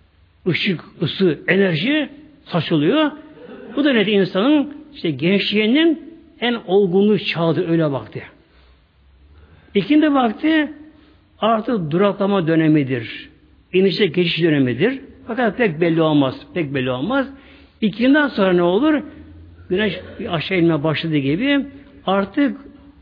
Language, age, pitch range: Turkish, 60-79, 150-250 Hz